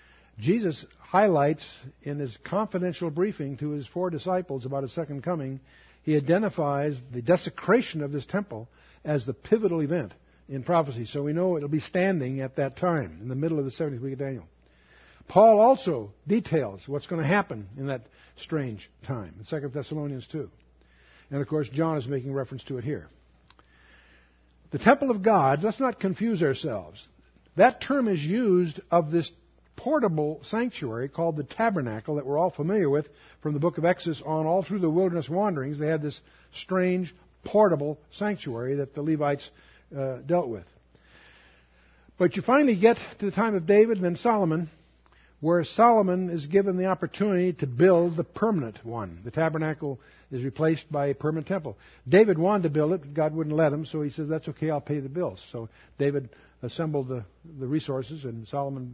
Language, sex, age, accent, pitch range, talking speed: Spanish, male, 60-79, American, 135-180 Hz, 175 wpm